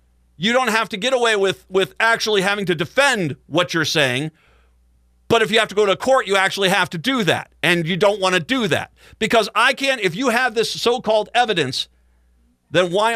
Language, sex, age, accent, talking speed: English, male, 50-69, American, 215 wpm